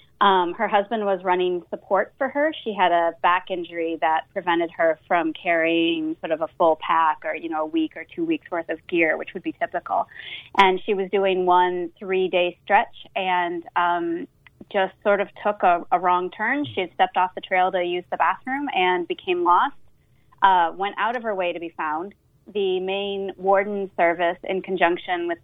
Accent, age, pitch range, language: American, 30-49, 170-195 Hz, English